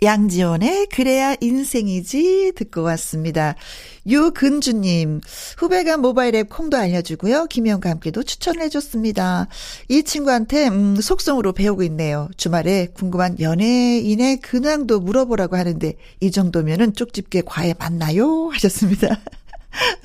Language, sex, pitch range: Korean, female, 175-265 Hz